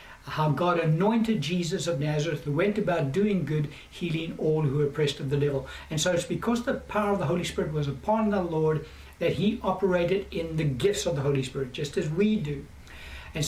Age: 60-79